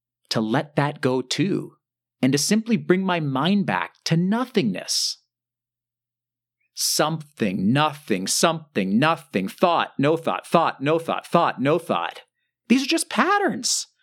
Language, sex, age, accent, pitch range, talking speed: English, male, 40-59, American, 120-195 Hz, 135 wpm